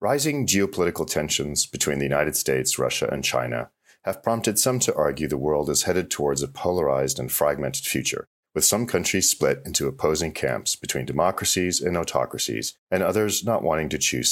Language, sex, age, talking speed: English, male, 40-59, 175 wpm